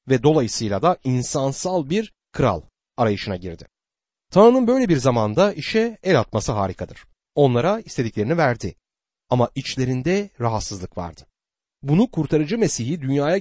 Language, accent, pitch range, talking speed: Turkish, native, 105-175 Hz, 120 wpm